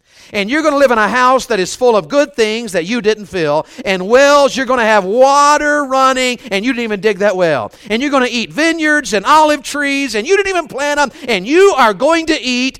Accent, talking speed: American, 255 wpm